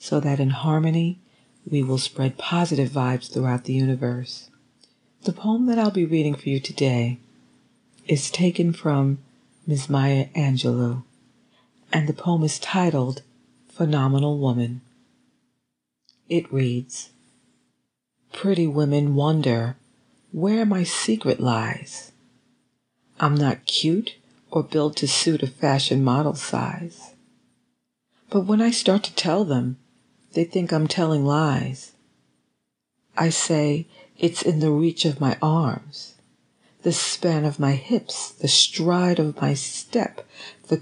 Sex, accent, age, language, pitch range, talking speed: female, American, 40-59, English, 135-165 Hz, 125 wpm